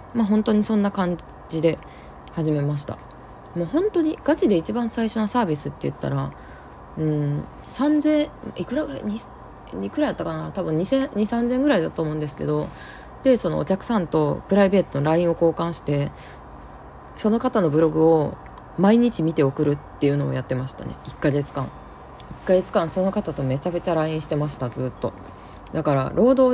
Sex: female